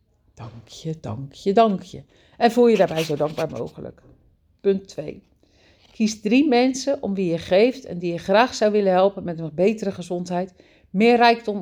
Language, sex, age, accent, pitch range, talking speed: Dutch, female, 50-69, Dutch, 165-210 Hz, 165 wpm